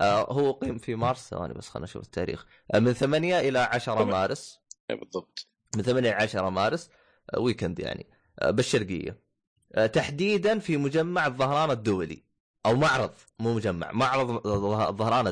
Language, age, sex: Arabic, 20-39, male